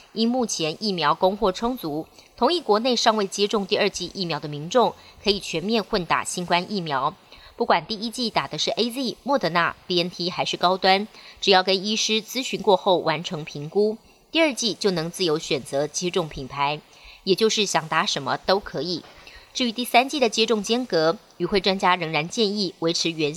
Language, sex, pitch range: Chinese, male, 165-215 Hz